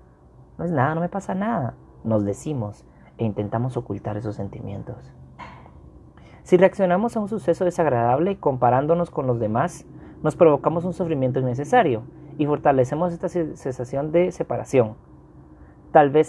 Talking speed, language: 140 wpm, English